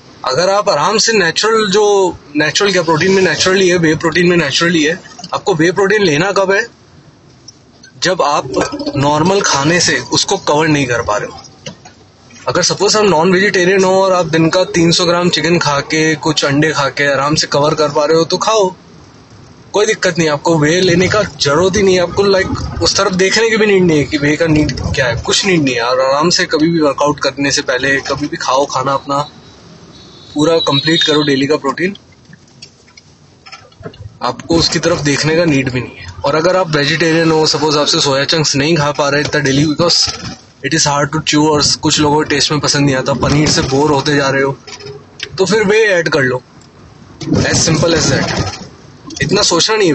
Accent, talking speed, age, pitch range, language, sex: native, 200 wpm, 20-39, 145-180 Hz, Hindi, male